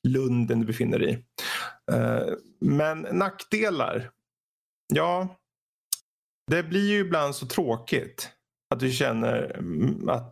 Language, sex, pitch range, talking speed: Swedish, male, 120-165 Hz, 105 wpm